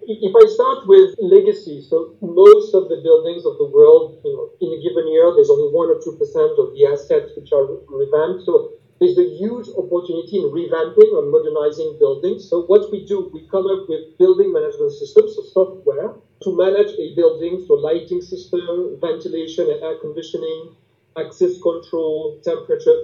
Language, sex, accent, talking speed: English, male, French, 170 wpm